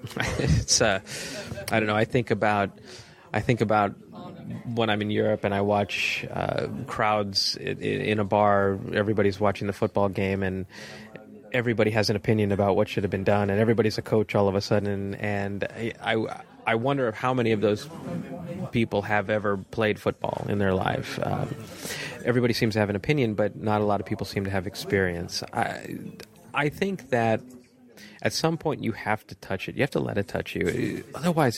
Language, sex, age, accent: English, male, 30-49, American